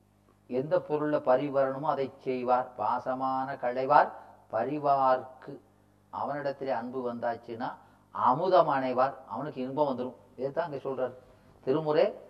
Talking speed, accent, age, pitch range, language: 100 wpm, native, 30-49, 125-165 Hz, Tamil